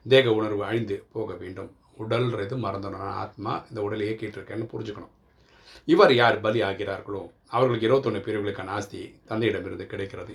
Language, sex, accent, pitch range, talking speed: Tamil, male, native, 100-115 Hz, 135 wpm